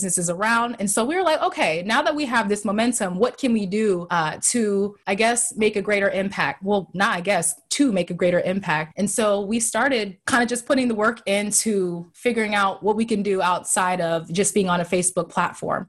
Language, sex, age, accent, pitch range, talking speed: English, female, 20-39, American, 185-225 Hz, 225 wpm